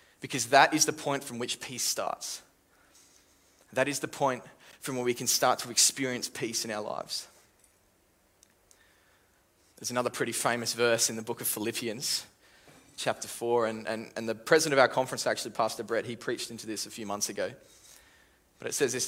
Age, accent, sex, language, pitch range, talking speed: 20-39, Australian, male, English, 105-125 Hz, 180 wpm